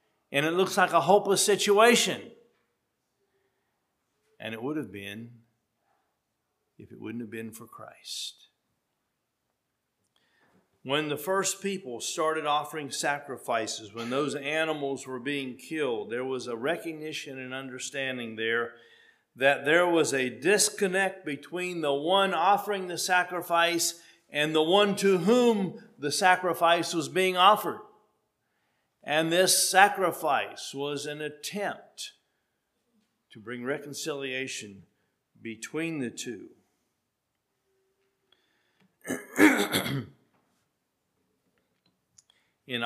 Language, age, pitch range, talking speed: English, 50-69, 130-190 Hz, 100 wpm